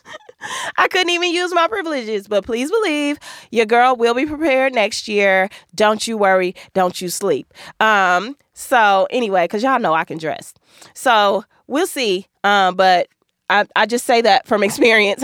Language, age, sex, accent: English, 20-39, female, American